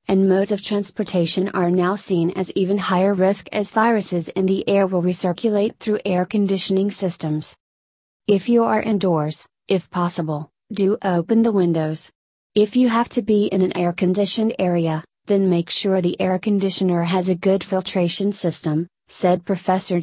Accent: American